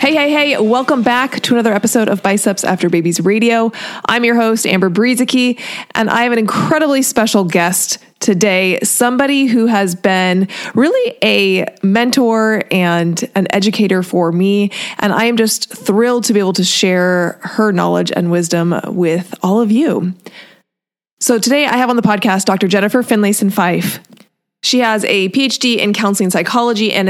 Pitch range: 185-235 Hz